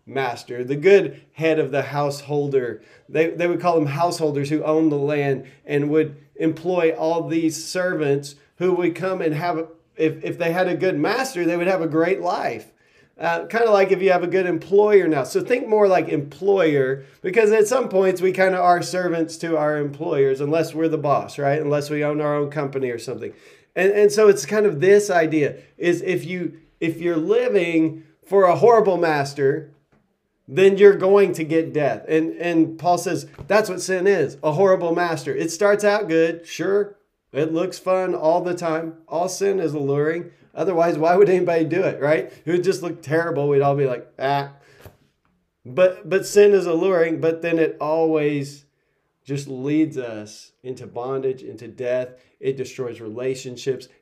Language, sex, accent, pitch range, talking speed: English, male, American, 145-180 Hz, 185 wpm